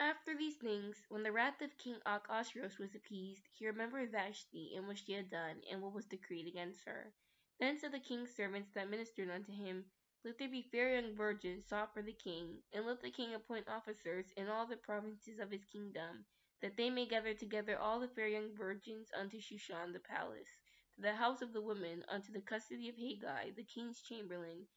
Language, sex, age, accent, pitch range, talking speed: English, female, 10-29, American, 195-225 Hz, 205 wpm